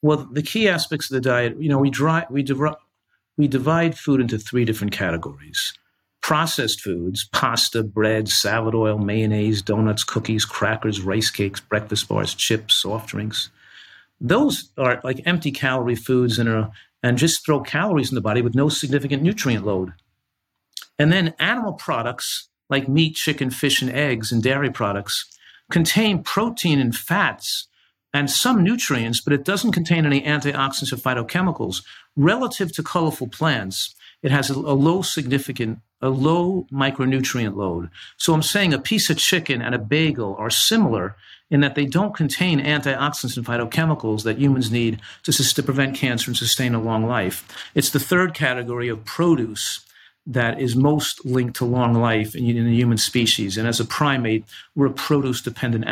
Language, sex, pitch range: English, male, 115-150 Hz